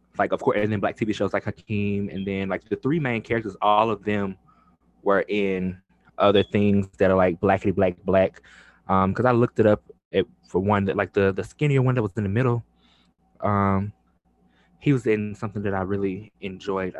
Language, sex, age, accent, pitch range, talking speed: English, male, 20-39, American, 95-110 Hz, 210 wpm